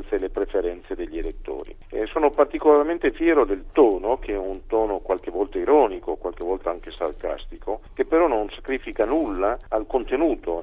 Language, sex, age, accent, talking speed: Italian, male, 50-69, native, 165 wpm